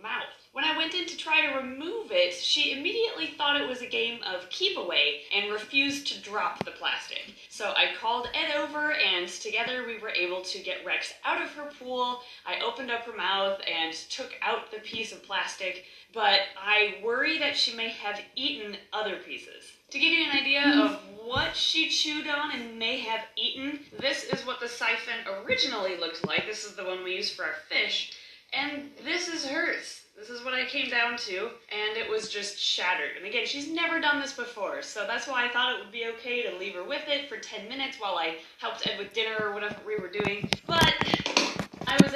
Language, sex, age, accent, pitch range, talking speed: English, female, 30-49, American, 210-290 Hz, 210 wpm